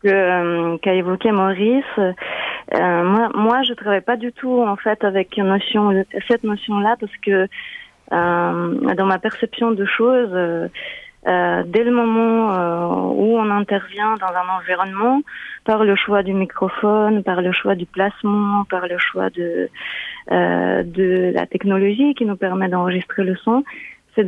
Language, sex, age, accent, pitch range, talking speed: French, female, 30-49, French, 185-225 Hz, 160 wpm